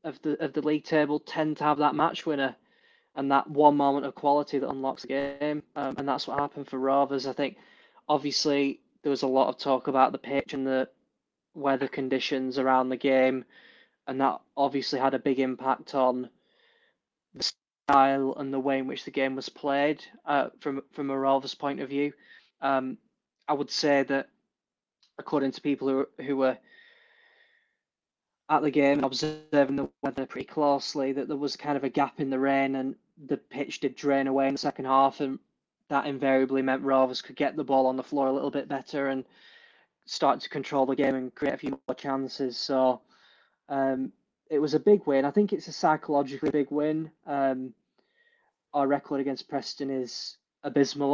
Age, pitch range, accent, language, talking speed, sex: 20-39, 135-145 Hz, British, English, 190 wpm, male